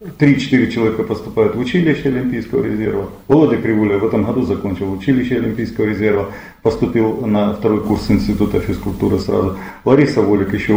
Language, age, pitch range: Russian, 40-59, 110-165 Hz